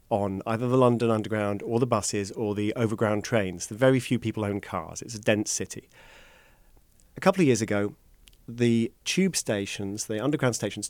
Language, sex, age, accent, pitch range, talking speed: English, male, 40-59, British, 105-140 Hz, 175 wpm